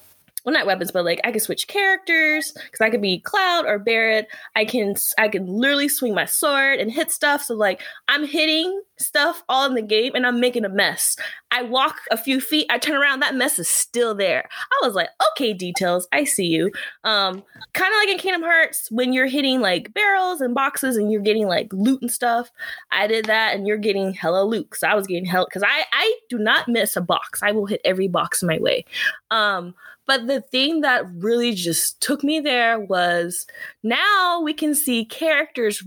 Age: 20-39